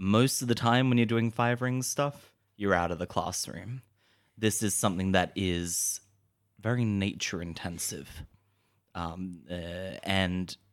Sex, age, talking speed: male, 20-39, 145 wpm